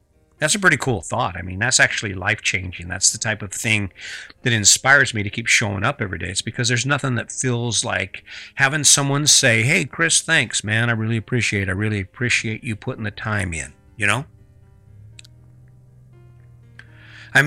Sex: male